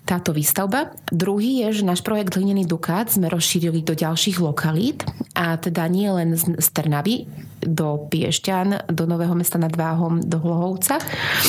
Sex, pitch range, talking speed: female, 165-195 Hz, 150 wpm